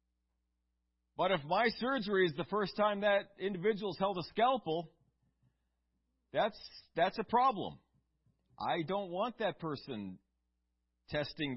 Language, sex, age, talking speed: English, male, 40-59, 125 wpm